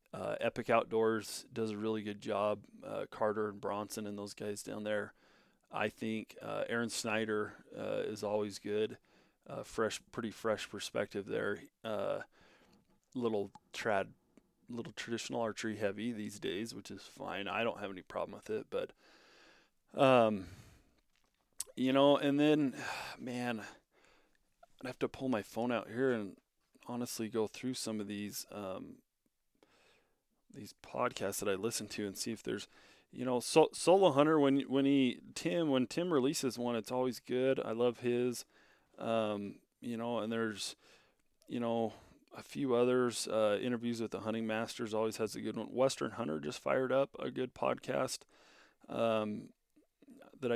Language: English